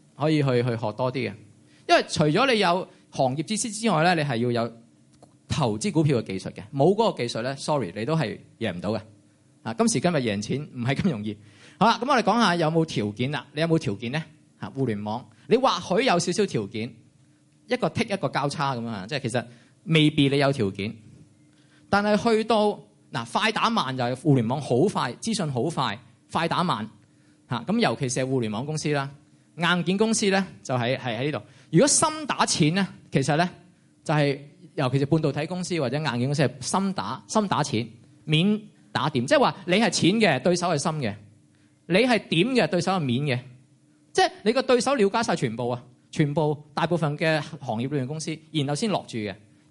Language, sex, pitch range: Chinese, male, 125-180 Hz